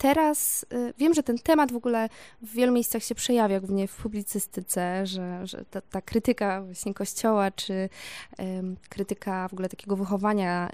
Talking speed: 155 wpm